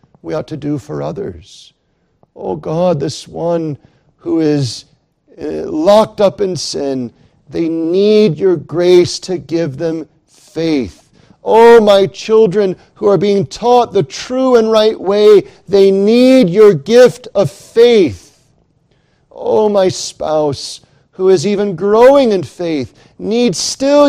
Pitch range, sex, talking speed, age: 155-220 Hz, male, 130 wpm, 40-59